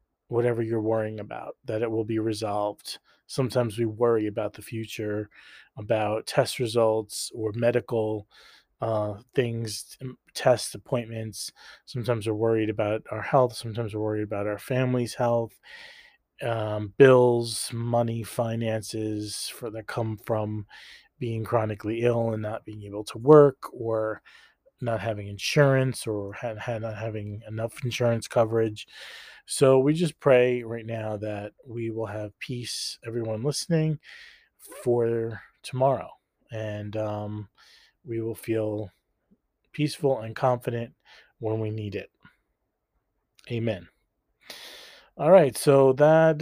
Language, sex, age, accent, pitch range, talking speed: English, male, 30-49, American, 110-125 Hz, 125 wpm